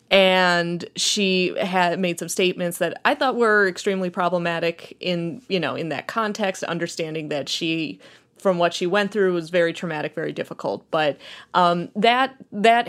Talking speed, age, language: 165 wpm, 30-49, English